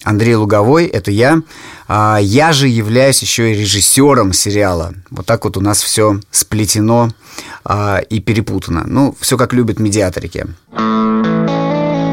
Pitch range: 100-130 Hz